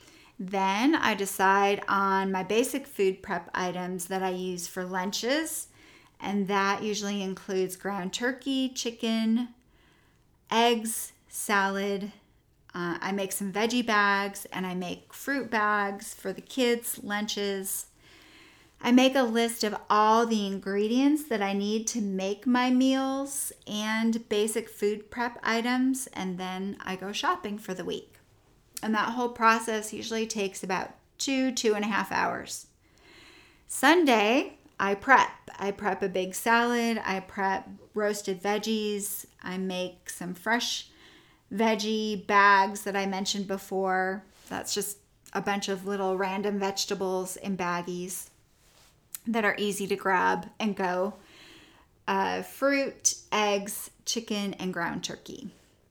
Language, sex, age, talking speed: English, female, 30-49, 135 wpm